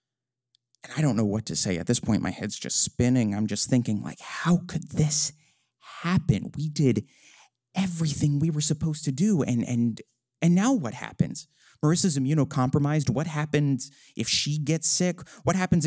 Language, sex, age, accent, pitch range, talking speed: English, male, 30-49, American, 120-140 Hz, 175 wpm